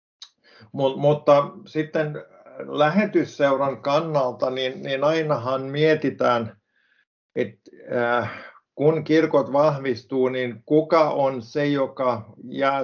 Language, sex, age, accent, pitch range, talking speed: Finnish, male, 50-69, native, 125-150 Hz, 80 wpm